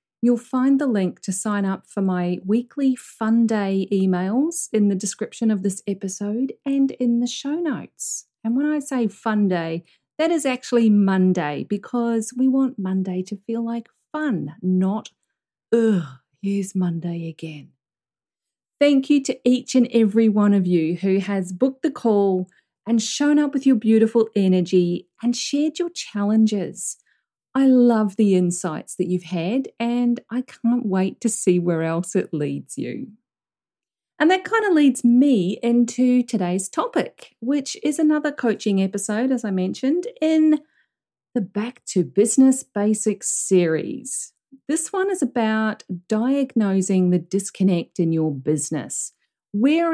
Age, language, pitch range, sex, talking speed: 40-59, English, 185-255 Hz, female, 150 wpm